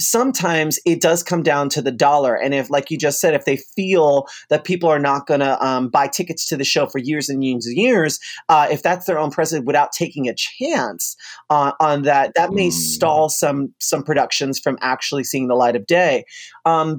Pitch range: 135-165 Hz